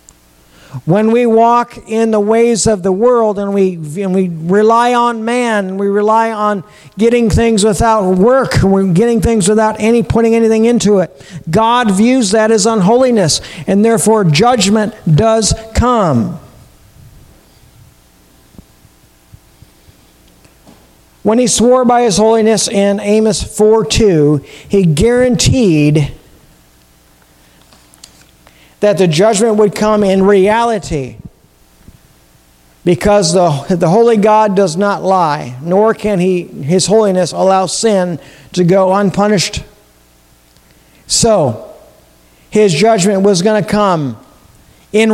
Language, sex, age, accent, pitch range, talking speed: English, male, 50-69, American, 150-220 Hz, 115 wpm